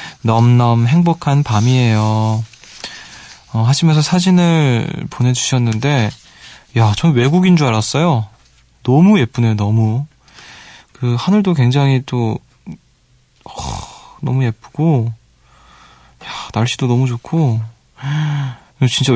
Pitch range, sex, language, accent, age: 115-150 Hz, male, Korean, native, 20-39